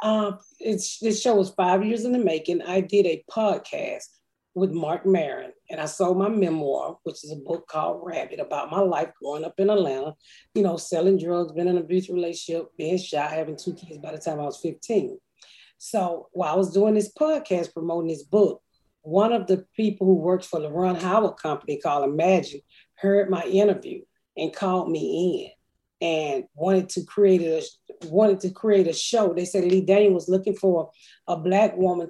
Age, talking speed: 40-59, 195 wpm